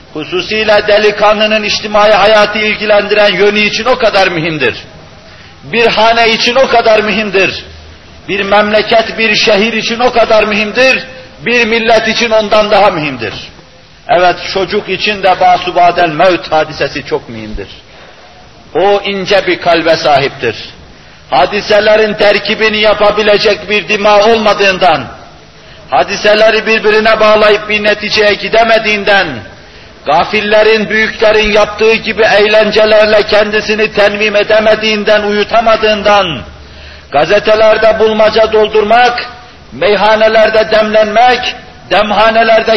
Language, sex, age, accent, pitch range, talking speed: Turkish, male, 50-69, native, 190-220 Hz, 100 wpm